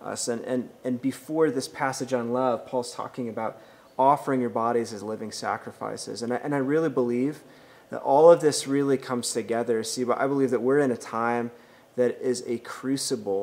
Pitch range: 120-145 Hz